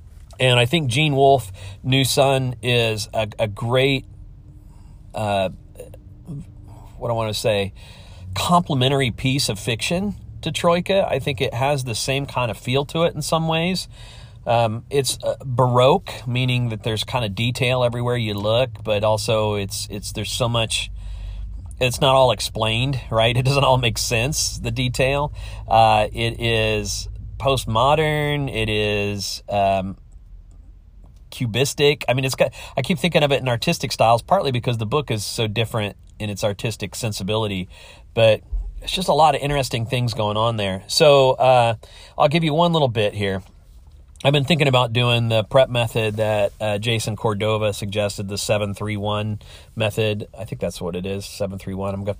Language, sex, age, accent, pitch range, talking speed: English, male, 40-59, American, 100-130 Hz, 170 wpm